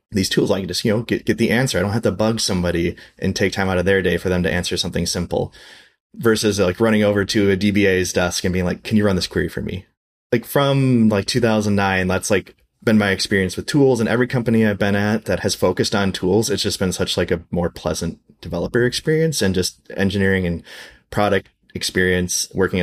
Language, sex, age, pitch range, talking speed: English, male, 20-39, 90-105 Hz, 230 wpm